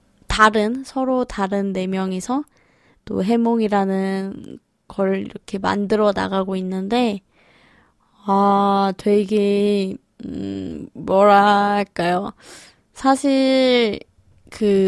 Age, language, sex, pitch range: 20-39, Korean, female, 195-245 Hz